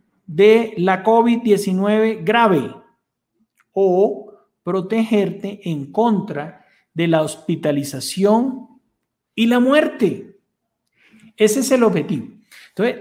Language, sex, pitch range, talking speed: Spanish, male, 160-220 Hz, 90 wpm